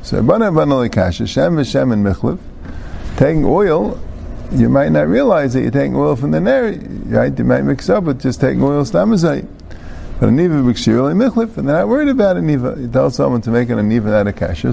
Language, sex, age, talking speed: English, male, 50-69, 205 wpm